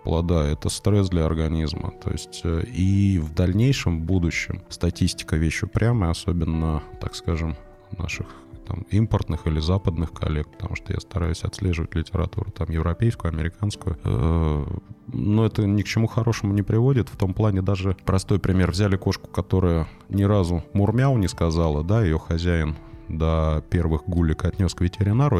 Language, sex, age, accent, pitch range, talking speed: Russian, male, 20-39, native, 85-105 Hz, 150 wpm